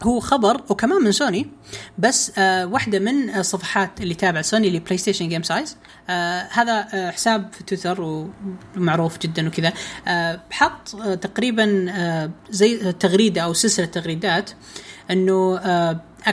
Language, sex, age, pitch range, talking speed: Arabic, female, 20-39, 180-225 Hz, 130 wpm